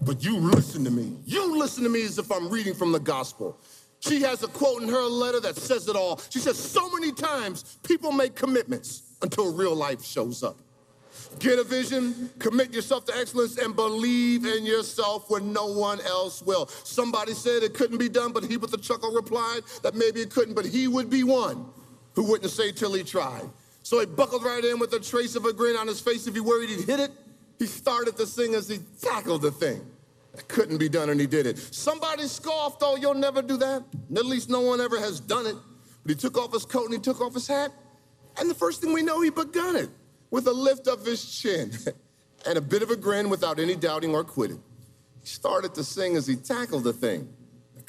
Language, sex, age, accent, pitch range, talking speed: English, male, 40-59, American, 170-250 Hz, 230 wpm